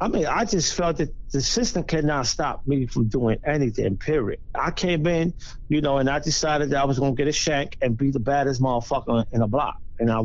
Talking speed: 235 wpm